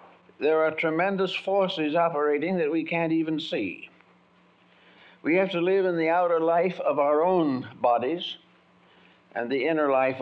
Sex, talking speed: male, 155 wpm